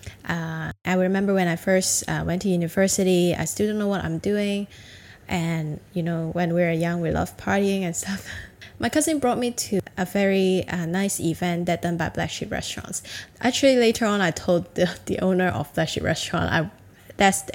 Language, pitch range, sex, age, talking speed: English, 175-200 Hz, female, 10-29, 205 wpm